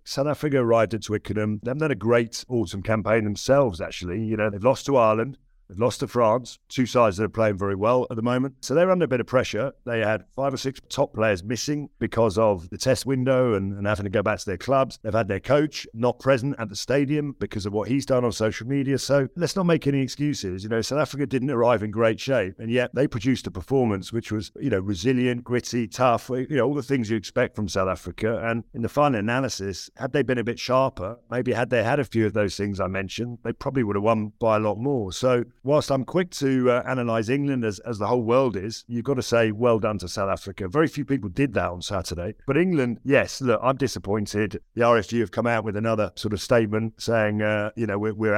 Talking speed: 245 wpm